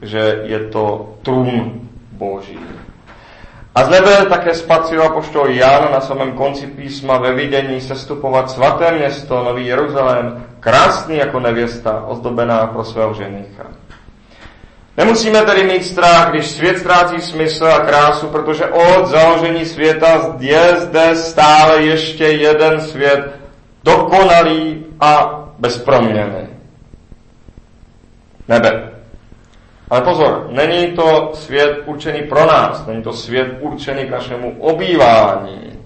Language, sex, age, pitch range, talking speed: Czech, male, 40-59, 115-155 Hz, 115 wpm